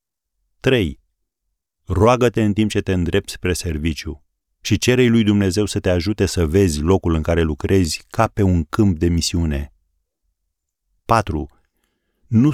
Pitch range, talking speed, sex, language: 80-105 Hz, 145 wpm, male, Romanian